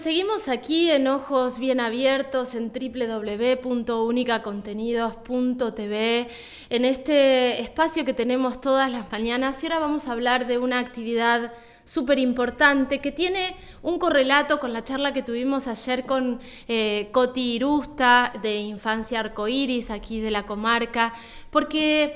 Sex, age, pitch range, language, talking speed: female, 20-39, 235-270 Hz, Spanish, 130 wpm